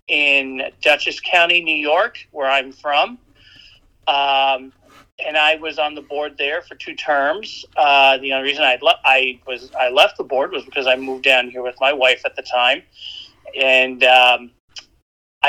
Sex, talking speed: male, 175 wpm